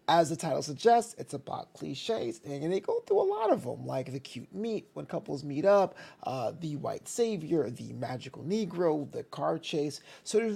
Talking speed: 200 wpm